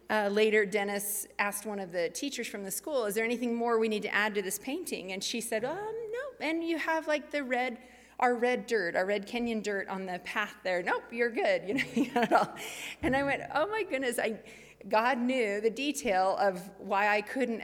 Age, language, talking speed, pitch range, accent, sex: 30-49, English, 230 wpm, 190-230 Hz, American, female